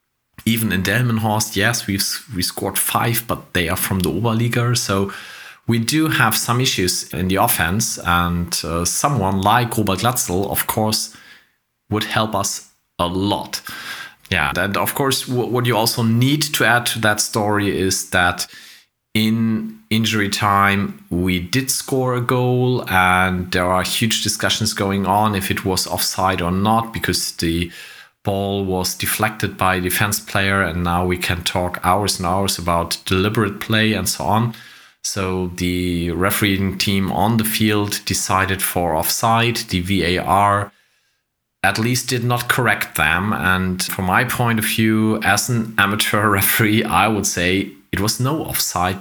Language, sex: English, male